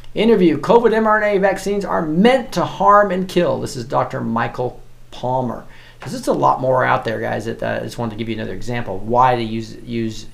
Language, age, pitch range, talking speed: English, 40-59, 115-140 Hz, 210 wpm